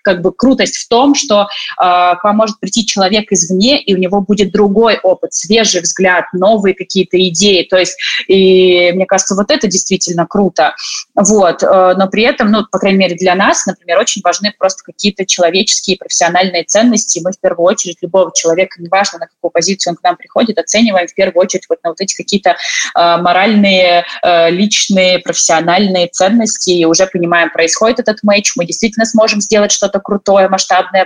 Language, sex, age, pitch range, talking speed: Russian, female, 20-39, 175-210 Hz, 180 wpm